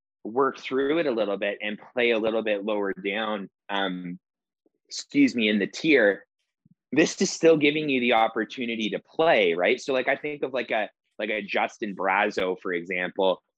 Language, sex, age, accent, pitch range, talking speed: English, male, 30-49, American, 100-120 Hz, 185 wpm